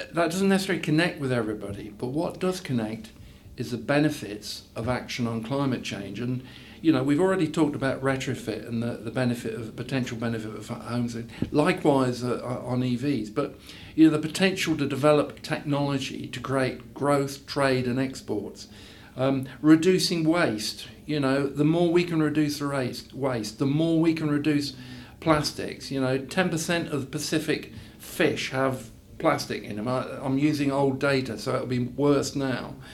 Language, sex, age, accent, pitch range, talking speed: English, male, 50-69, British, 120-150 Hz, 170 wpm